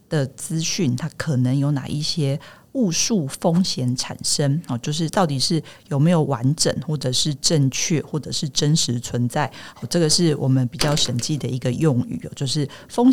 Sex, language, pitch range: female, Chinese, 135-165 Hz